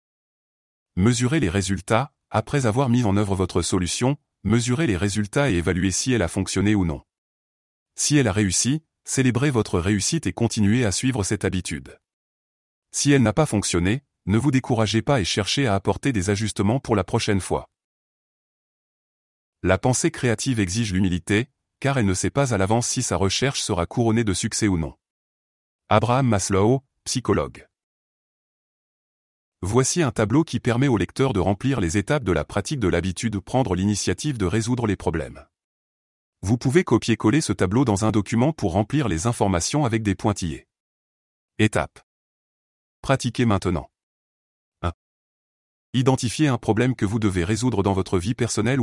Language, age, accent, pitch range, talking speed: French, 20-39, French, 95-125 Hz, 160 wpm